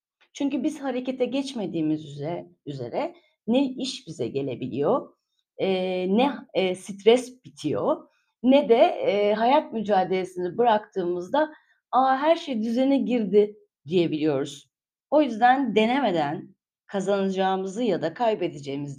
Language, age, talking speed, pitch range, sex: Turkish, 30-49, 100 wpm, 175-245 Hz, female